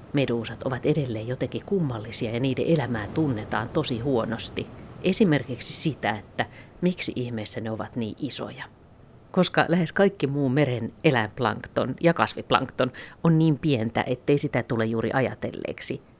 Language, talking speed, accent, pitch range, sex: Finnish, 135 wpm, native, 115-140 Hz, female